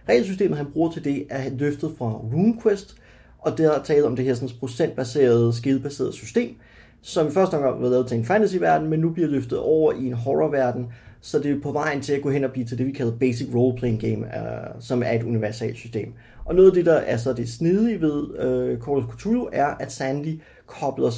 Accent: native